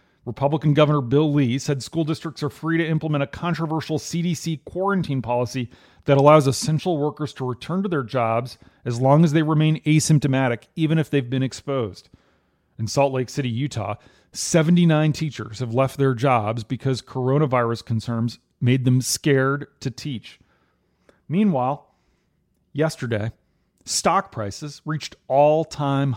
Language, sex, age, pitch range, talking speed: English, male, 40-59, 120-150 Hz, 140 wpm